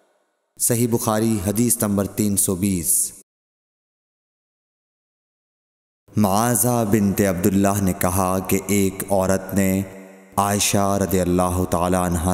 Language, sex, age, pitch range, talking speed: Urdu, male, 30-49, 95-110 Hz, 100 wpm